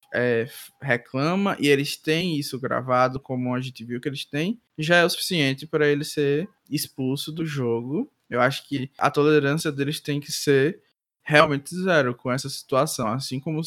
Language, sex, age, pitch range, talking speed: Portuguese, male, 20-39, 130-155 Hz, 170 wpm